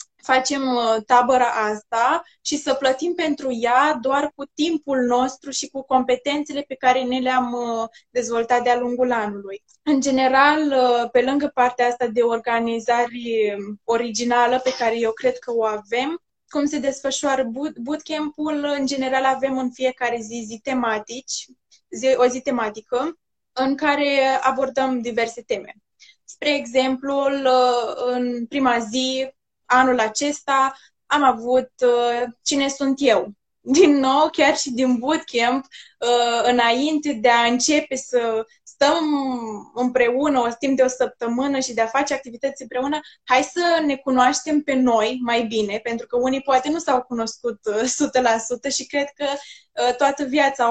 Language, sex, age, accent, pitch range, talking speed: Romanian, female, 20-39, native, 240-275 Hz, 135 wpm